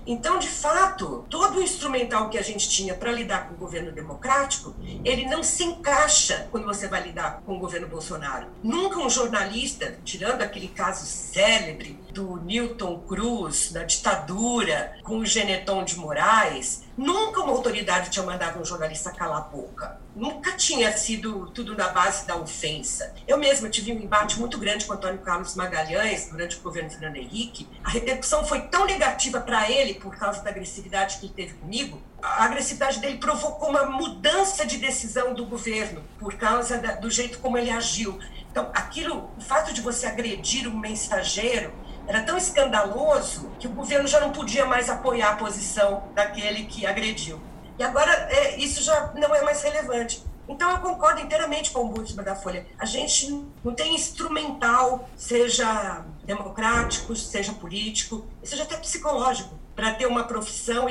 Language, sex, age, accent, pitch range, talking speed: Portuguese, female, 50-69, Brazilian, 195-260 Hz, 165 wpm